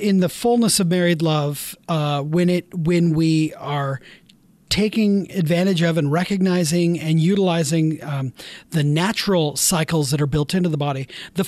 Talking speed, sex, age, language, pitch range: 155 wpm, male, 40-59, English, 150-190 Hz